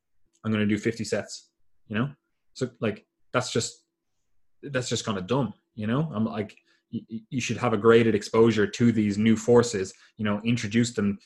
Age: 20-39